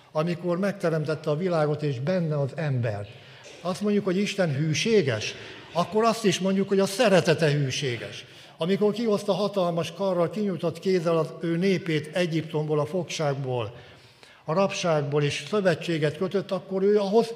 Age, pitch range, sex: 60-79, 135-175 Hz, male